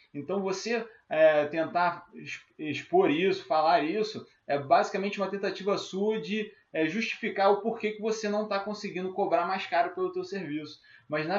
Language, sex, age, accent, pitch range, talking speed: Portuguese, male, 20-39, Brazilian, 165-210 Hz, 165 wpm